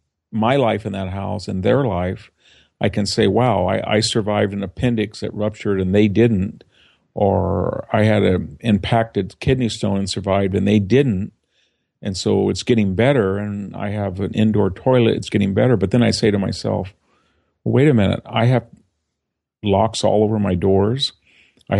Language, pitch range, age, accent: English, 100-115 Hz, 50-69, American